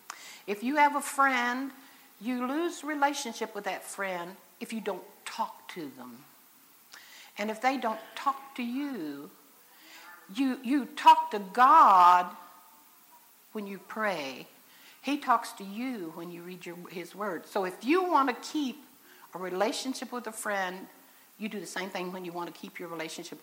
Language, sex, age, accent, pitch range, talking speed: English, female, 60-79, American, 195-260 Hz, 165 wpm